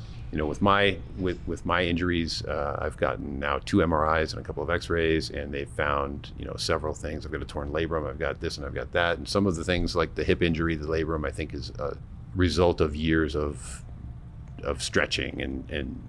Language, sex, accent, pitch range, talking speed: English, male, American, 75-85 Hz, 230 wpm